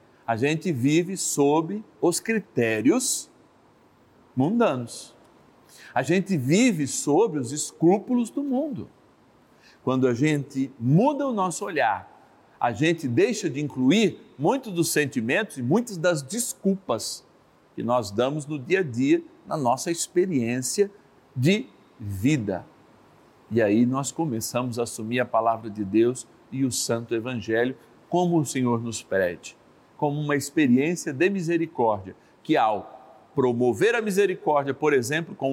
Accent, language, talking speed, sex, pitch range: Brazilian, Portuguese, 130 wpm, male, 125-185 Hz